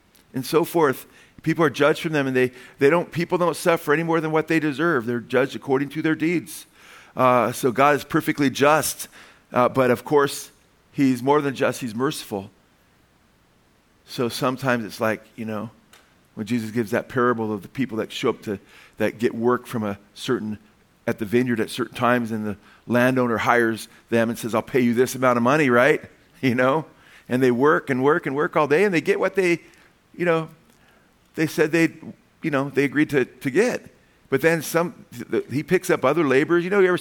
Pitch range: 120-160 Hz